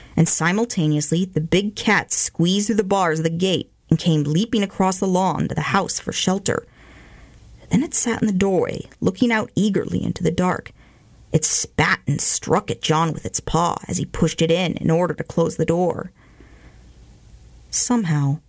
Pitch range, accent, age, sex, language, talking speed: 160-210 Hz, American, 40-59, female, English, 180 wpm